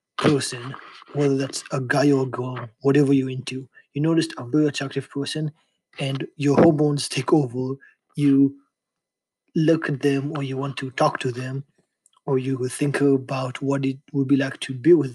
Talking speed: 180 wpm